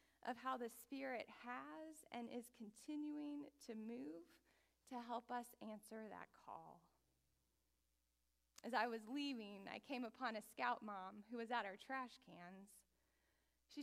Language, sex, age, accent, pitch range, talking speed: English, female, 20-39, American, 210-265 Hz, 145 wpm